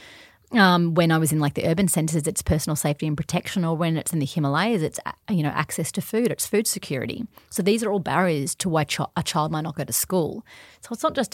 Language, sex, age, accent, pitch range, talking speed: English, female, 30-49, Australian, 150-175 Hz, 250 wpm